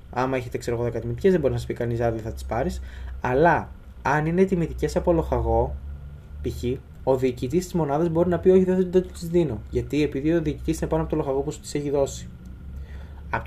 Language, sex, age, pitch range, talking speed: Greek, male, 20-39, 110-150 Hz, 210 wpm